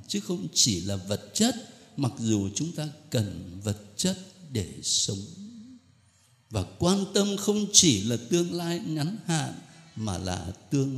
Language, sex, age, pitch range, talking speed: Vietnamese, male, 60-79, 105-155 Hz, 155 wpm